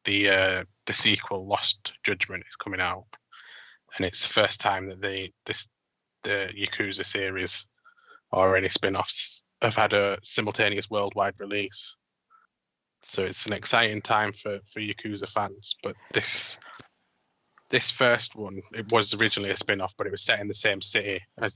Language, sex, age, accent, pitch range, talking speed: English, male, 20-39, British, 95-105 Hz, 160 wpm